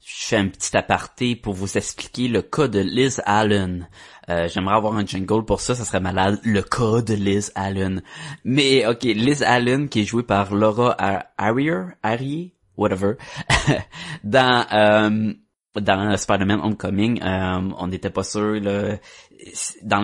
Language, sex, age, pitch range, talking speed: French, male, 20-39, 95-115 Hz, 160 wpm